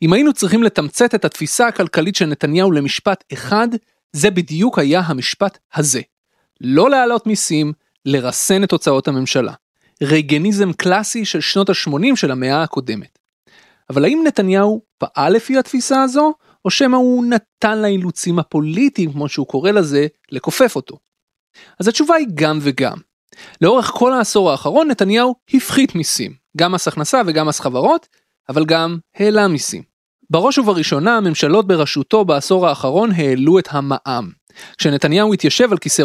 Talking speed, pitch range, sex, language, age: 140 wpm, 150-220 Hz, male, Hebrew, 30-49